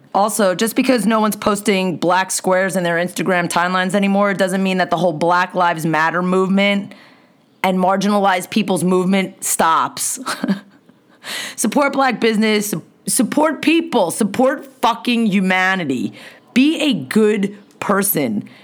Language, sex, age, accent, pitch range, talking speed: English, female, 30-49, American, 175-225 Hz, 130 wpm